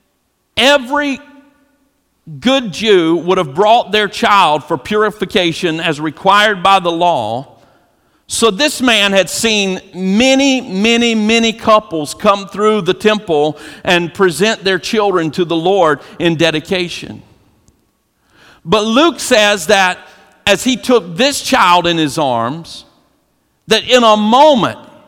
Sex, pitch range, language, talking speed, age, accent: male, 170-235 Hz, English, 125 wpm, 50-69, American